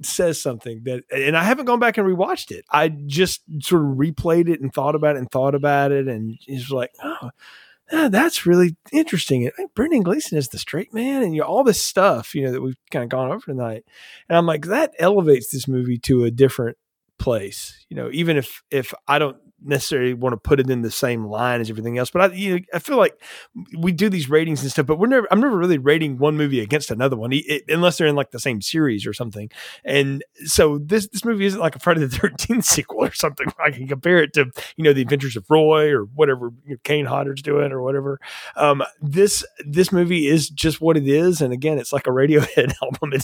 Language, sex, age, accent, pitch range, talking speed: English, male, 30-49, American, 135-175 Hz, 240 wpm